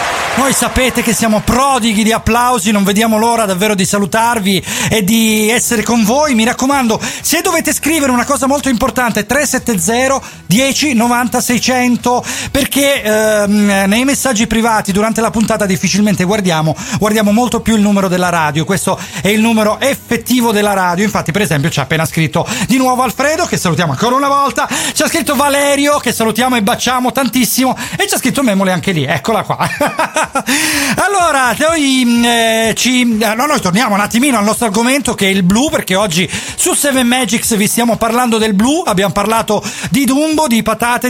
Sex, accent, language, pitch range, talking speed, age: male, native, Italian, 205-265 Hz, 170 wpm, 40-59